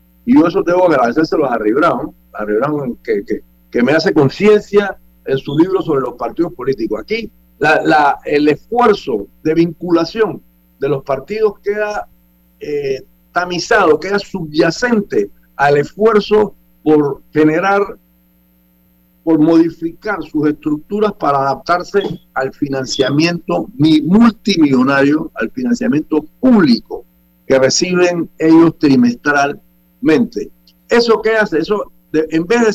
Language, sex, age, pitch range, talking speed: Spanish, male, 50-69, 120-185 Hz, 115 wpm